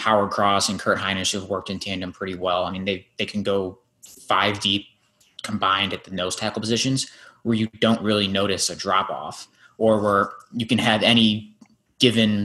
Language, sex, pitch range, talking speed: English, male, 100-115 Hz, 195 wpm